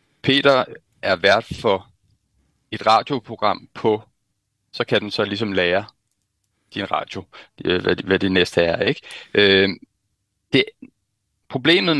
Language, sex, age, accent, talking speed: Danish, male, 30-49, native, 105 wpm